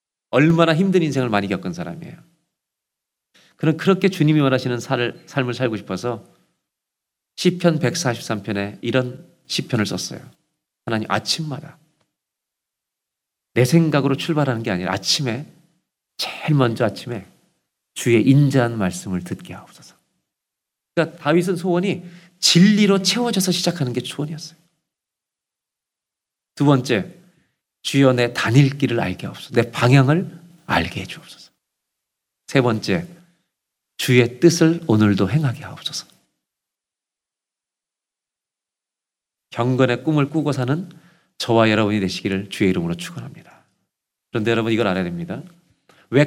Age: 40-59